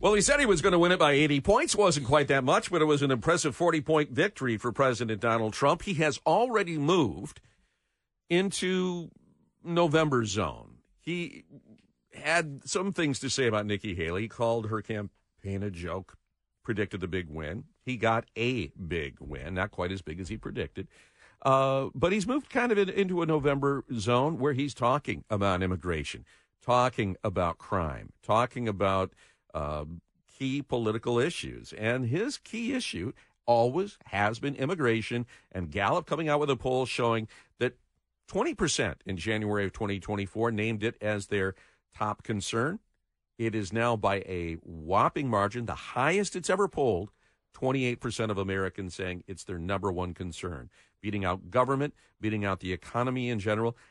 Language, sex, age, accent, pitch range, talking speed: English, male, 50-69, American, 100-145 Hz, 165 wpm